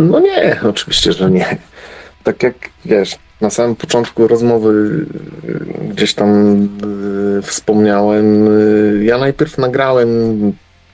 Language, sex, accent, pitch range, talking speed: Polish, male, native, 95-120 Hz, 100 wpm